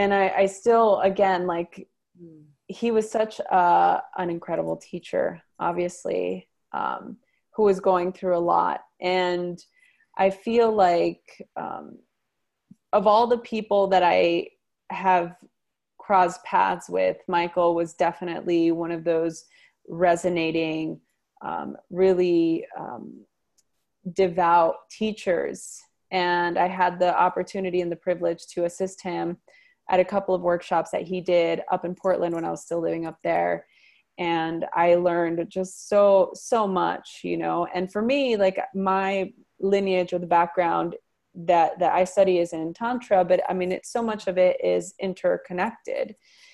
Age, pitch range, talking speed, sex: 30-49, 170-200 Hz, 145 wpm, female